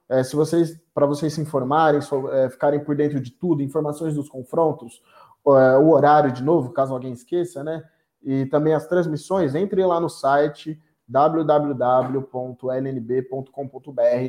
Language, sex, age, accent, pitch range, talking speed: Portuguese, male, 20-39, Brazilian, 135-155 Hz, 145 wpm